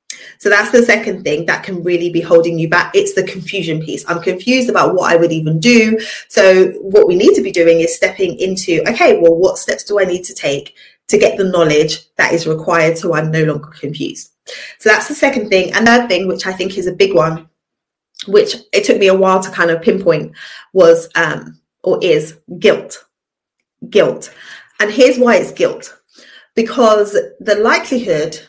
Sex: female